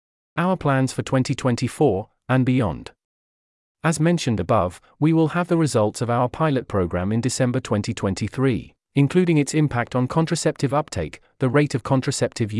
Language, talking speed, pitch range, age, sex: English, 150 wpm, 105-145 Hz, 40-59, male